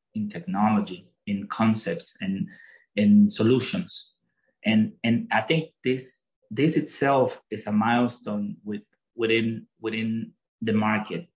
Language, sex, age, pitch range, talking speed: English, male, 30-49, 110-155 Hz, 115 wpm